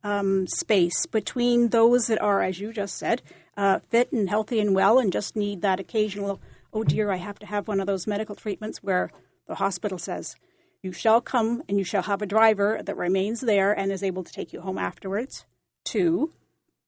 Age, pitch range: 40-59, 205-255 Hz